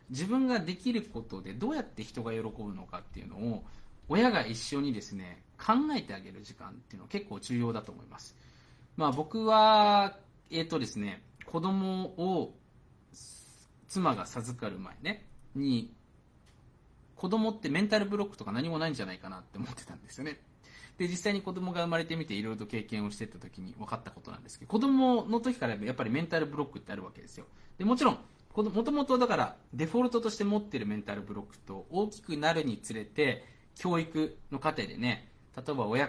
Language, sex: Japanese, male